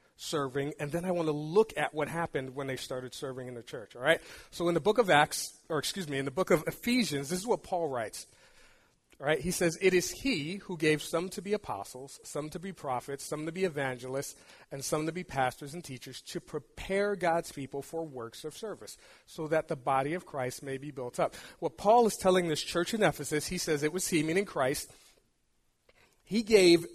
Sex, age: male, 40-59